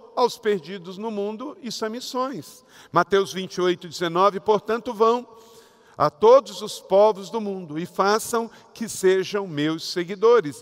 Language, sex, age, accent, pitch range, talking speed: Portuguese, male, 50-69, Brazilian, 160-205 Hz, 140 wpm